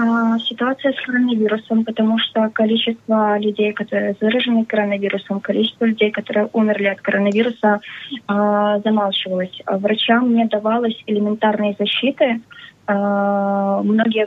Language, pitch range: Slovak, 205-230 Hz